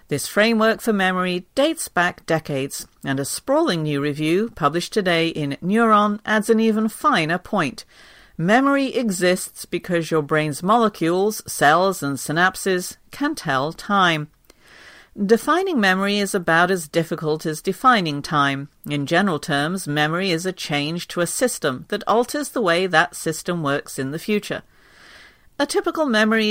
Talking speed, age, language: 145 wpm, 50-69, English